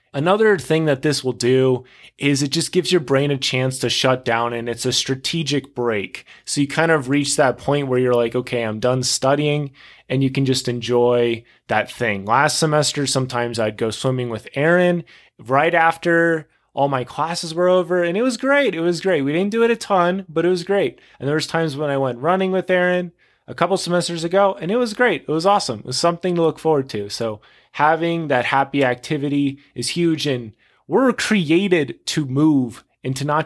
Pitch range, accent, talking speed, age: 130-160 Hz, American, 210 wpm, 20-39